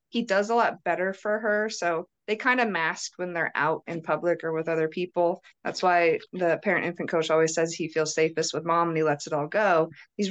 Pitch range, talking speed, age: 170-210 Hz, 240 wpm, 20-39